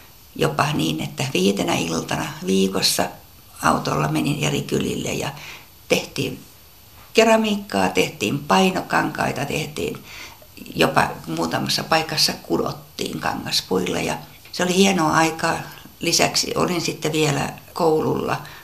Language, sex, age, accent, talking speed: Finnish, female, 60-79, native, 100 wpm